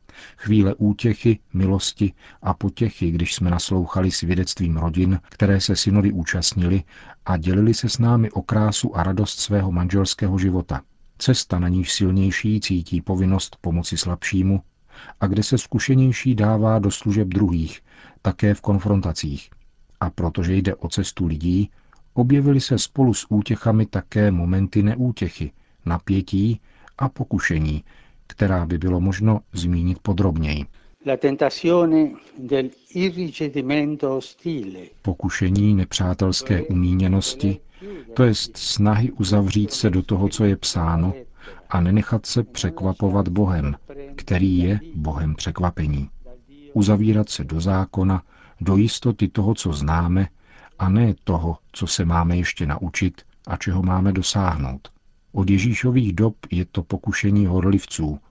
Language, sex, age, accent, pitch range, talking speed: Czech, male, 50-69, native, 90-110 Hz, 120 wpm